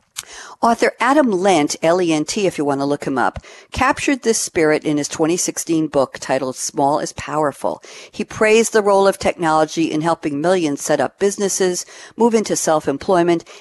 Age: 50-69